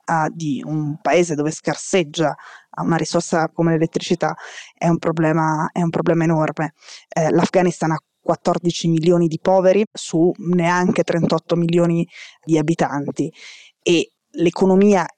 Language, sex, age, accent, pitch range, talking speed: Italian, female, 20-39, native, 155-175 Hz, 115 wpm